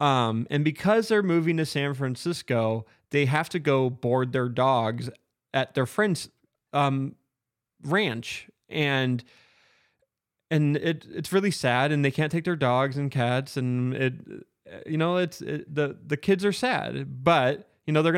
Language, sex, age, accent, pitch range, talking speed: English, male, 20-39, American, 125-165 Hz, 160 wpm